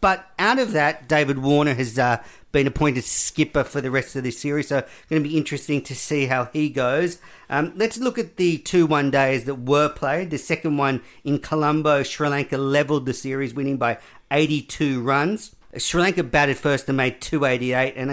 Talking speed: 200 wpm